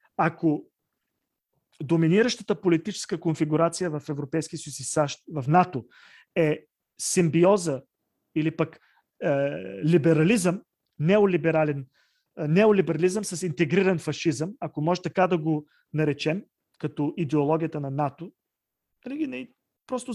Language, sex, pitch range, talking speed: Bulgarian, male, 145-190 Hz, 100 wpm